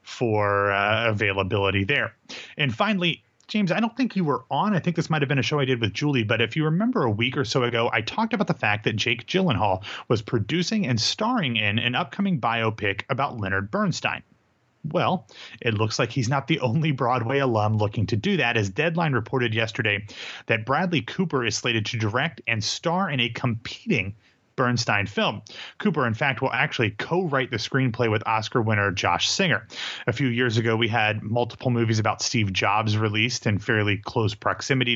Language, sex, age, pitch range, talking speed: English, male, 30-49, 110-140 Hz, 195 wpm